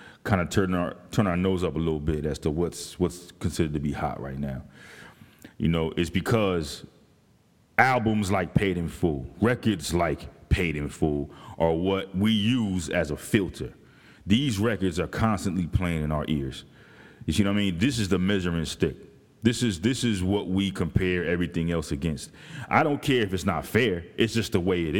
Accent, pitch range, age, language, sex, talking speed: American, 80-105 Hz, 30-49, English, male, 195 wpm